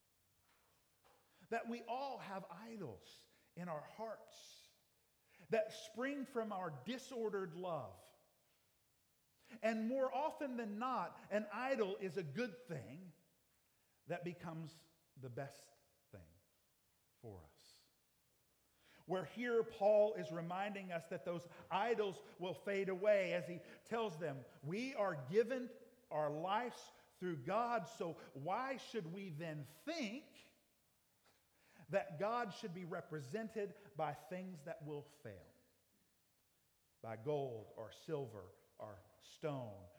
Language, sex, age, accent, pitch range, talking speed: English, male, 50-69, American, 155-220 Hz, 115 wpm